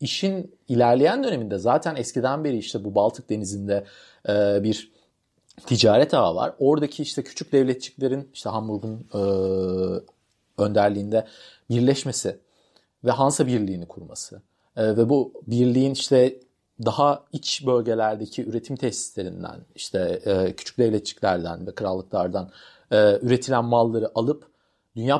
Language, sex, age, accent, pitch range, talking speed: Turkish, male, 40-59, native, 105-150 Hz, 105 wpm